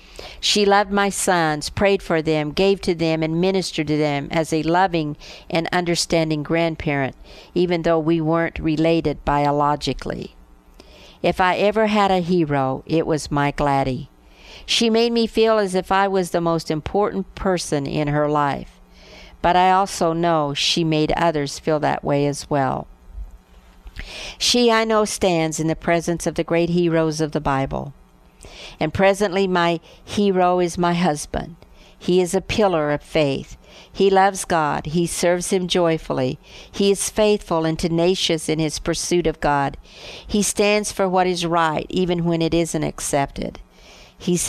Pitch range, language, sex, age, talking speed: 150-185 Hz, English, female, 50-69, 160 wpm